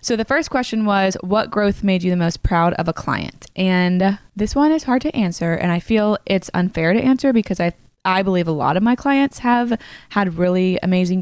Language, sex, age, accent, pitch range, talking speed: English, female, 20-39, American, 170-205 Hz, 225 wpm